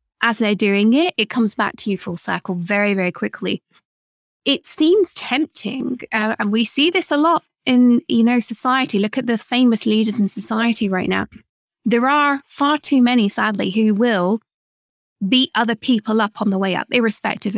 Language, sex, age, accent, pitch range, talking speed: English, female, 20-39, British, 195-235 Hz, 185 wpm